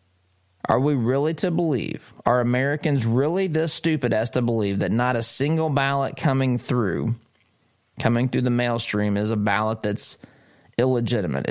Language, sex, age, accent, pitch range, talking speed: English, male, 20-39, American, 110-130 Hz, 155 wpm